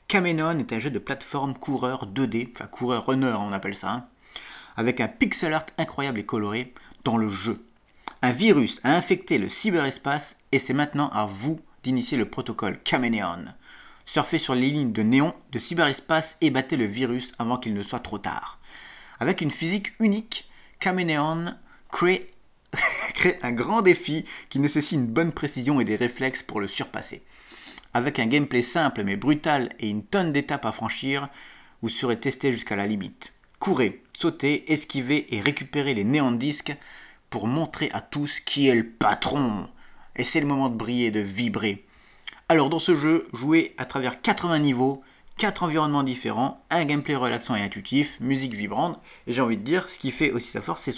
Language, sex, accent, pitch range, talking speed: French, male, French, 120-155 Hz, 180 wpm